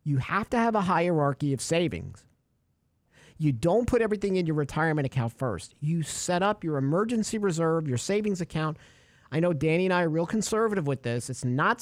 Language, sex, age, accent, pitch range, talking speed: English, male, 50-69, American, 135-195 Hz, 195 wpm